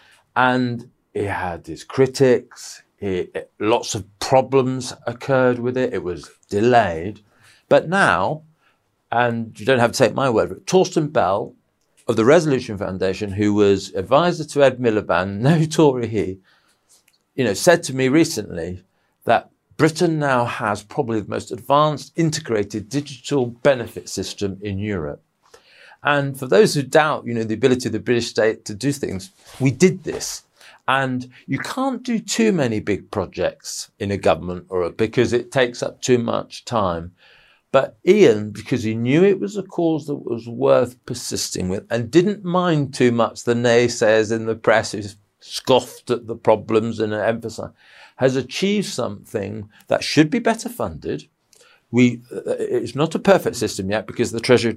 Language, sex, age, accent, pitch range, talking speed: English, male, 40-59, British, 110-145 Hz, 160 wpm